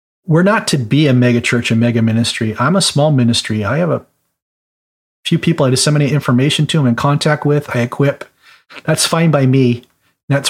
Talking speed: 195 wpm